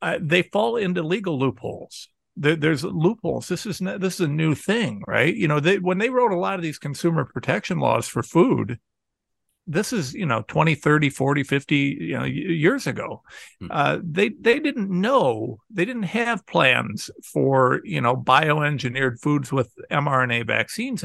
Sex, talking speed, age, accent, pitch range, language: male, 175 wpm, 50-69, American, 140-205 Hz, English